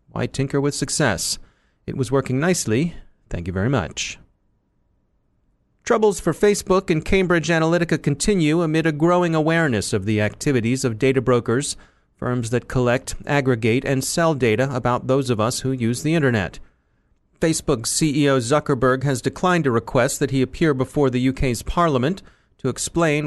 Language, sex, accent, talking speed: English, male, American, 155 wpm